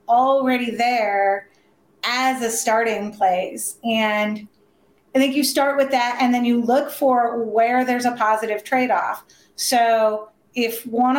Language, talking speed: English, 140 wpm